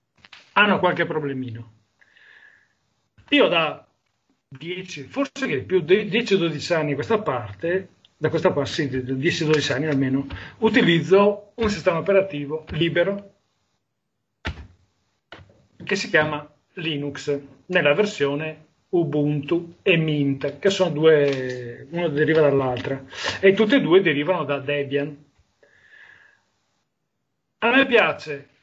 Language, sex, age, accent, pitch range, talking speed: Italian, male, 40-59, native, 145-190 Hz, 105 wpm